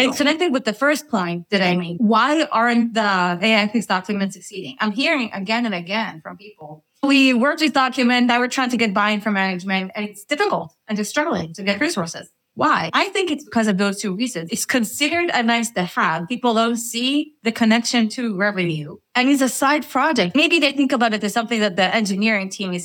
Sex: female